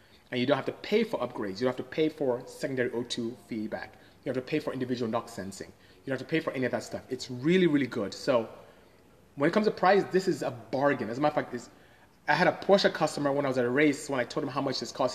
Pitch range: 120-165 Hz